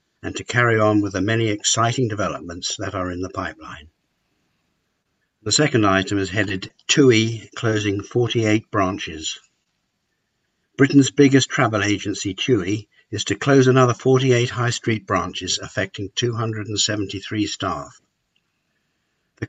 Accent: British